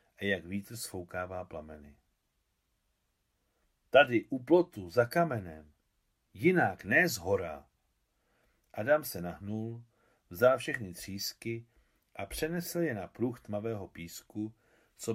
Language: Czech